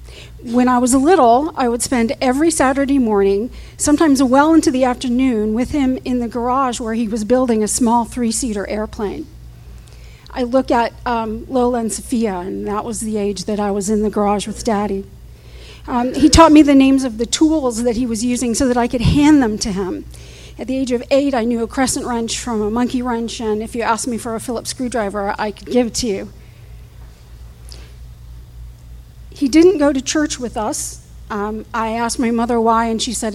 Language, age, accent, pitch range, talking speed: English, 50-69, American, 210-255 Hz, 205 wpm